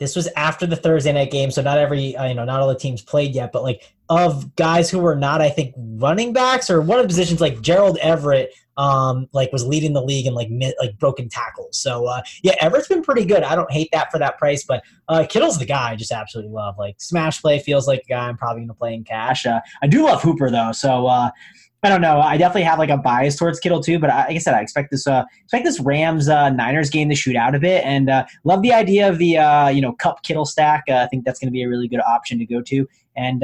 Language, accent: English, American